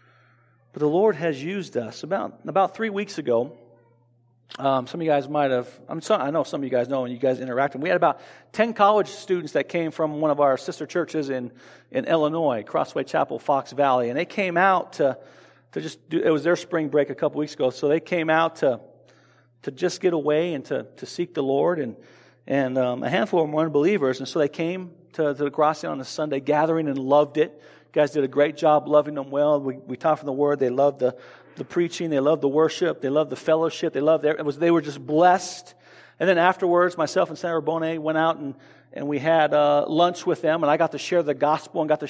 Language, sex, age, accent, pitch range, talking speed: English, male, 40-59, American, 140-165 Hz, 245 wpm